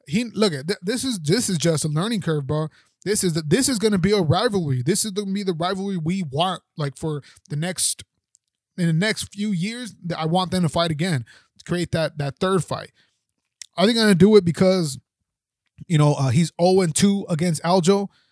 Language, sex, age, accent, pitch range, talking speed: English, male, 20-39, American, 155-190 Hz, 215 wpm